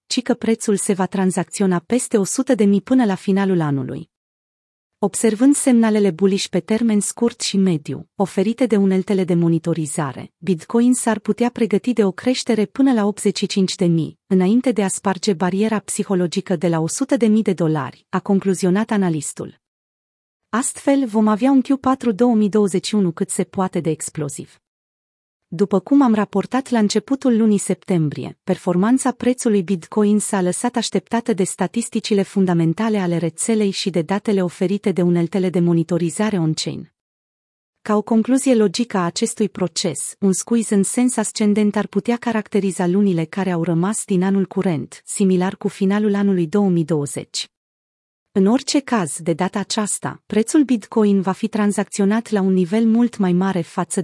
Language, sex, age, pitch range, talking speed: Romanian, female, 30-49, 180-225 Hz, 155 wpm